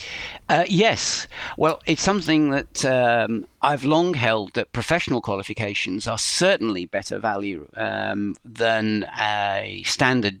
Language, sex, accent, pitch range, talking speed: English, male, British, 115-145 Hz, 120 wpm